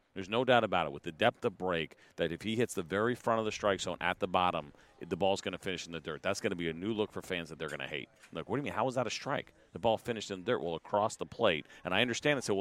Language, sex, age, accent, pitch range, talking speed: English, male, 40-59, American, 95-115 Hz, 340 wpm